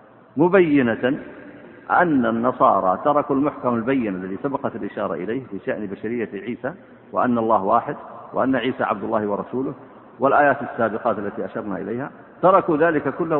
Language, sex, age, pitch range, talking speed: Arabic, male, 50-69, 115-160 Hz, 130 wpm